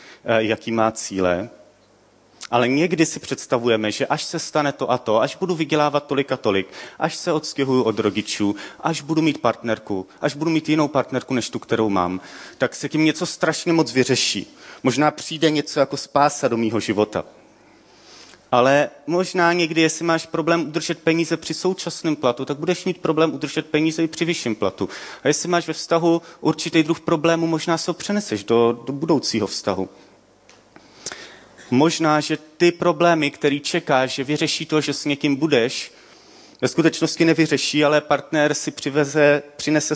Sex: male